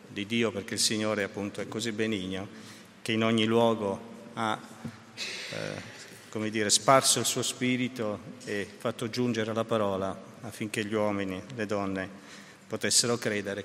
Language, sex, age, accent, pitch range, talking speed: Italian, male, 50-69, native, 105-120 Hz, 145 wpm